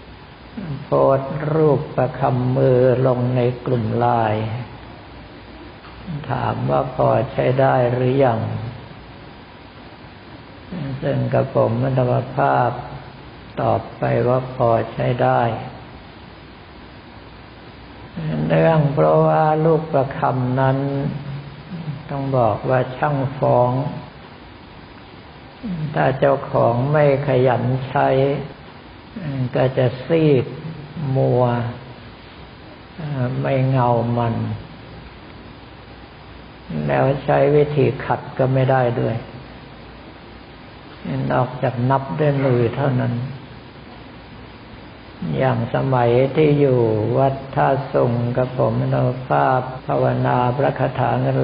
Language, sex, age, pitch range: Thai, male, 60-79, 120-140 Hz